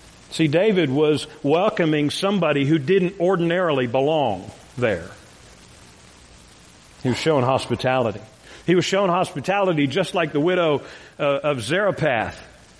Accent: American